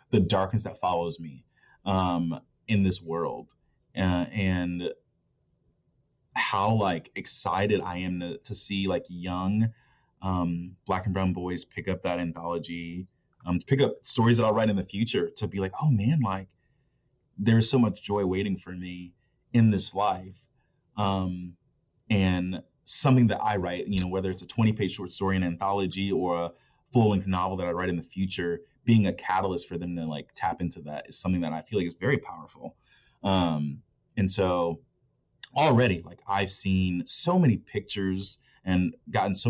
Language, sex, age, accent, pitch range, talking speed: English, male, 20-39, American, 90-110 Hz, 180 wpm